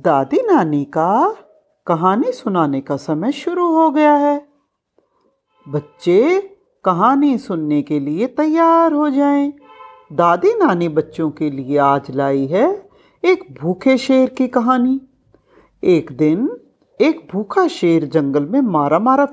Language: Hindi